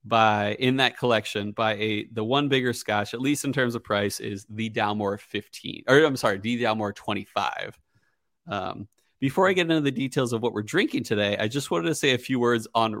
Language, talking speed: English, 215 wpm